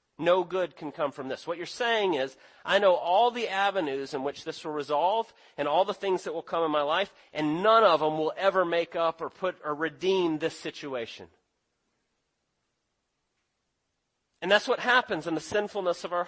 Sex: male